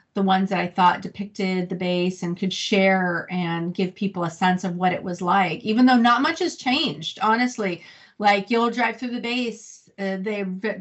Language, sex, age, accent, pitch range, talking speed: English, female, 40-59, American, 190-225 Hz, 200 wpm